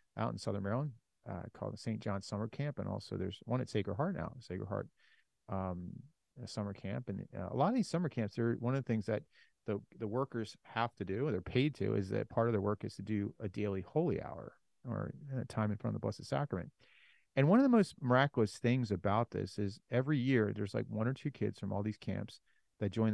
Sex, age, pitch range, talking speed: male, 30-49, 105-130 Hz, 245 wpm